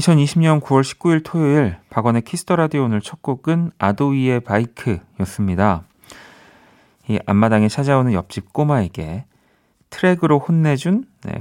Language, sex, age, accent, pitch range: Korean, male, 40-59, native, 95-140 Hz